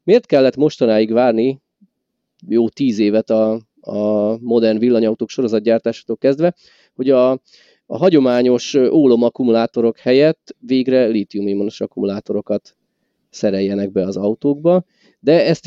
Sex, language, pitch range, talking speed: male, Hungarian, 105-130 Hz, 105 wpm